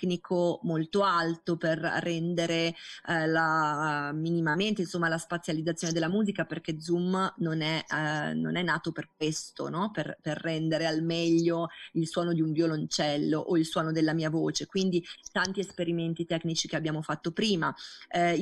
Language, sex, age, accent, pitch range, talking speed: Italian, female, 30-49, native, 165-195 Hz, 155 wpm